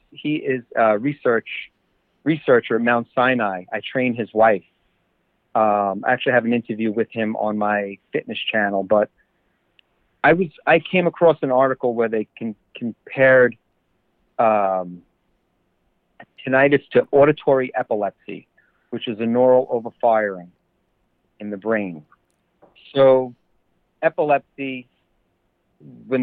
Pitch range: 110-140 Hz